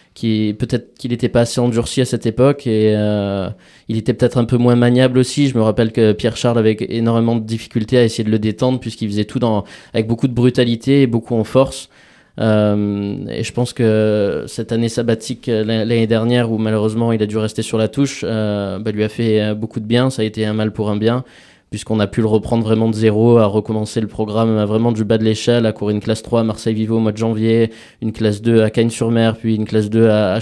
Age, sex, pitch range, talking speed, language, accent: 20-39, male, 110-120 Hz, 235 wpm, French, French